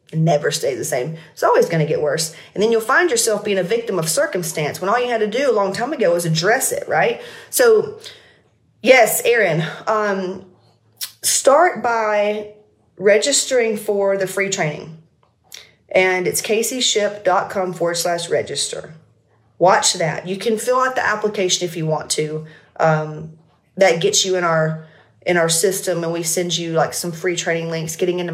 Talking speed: 175 wpm